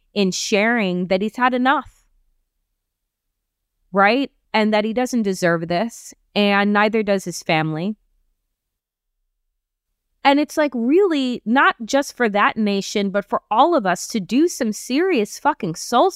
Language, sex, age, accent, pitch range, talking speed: English, female, 20-39, American, 175-270 Hz, 140 wpm